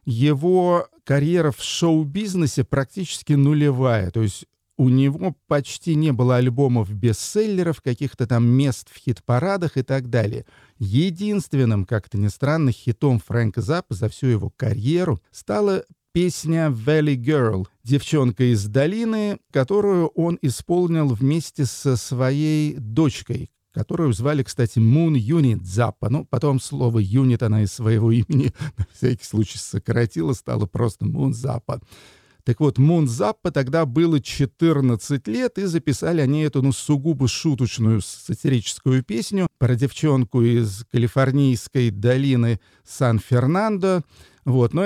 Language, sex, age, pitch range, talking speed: Russian, male, 50-69, 115-150 Hz, 125 wpm